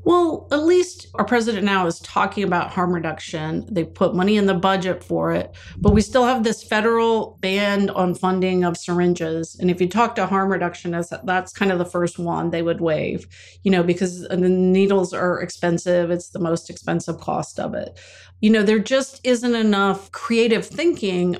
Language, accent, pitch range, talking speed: English, American, 180-230 Hz, 190 wpm